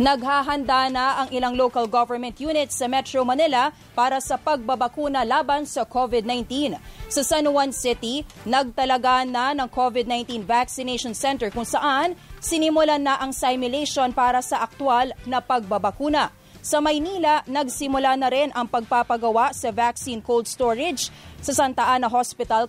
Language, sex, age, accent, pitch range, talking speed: English, female, 20-39, Filipino, 245-285 Hz, 140 wpm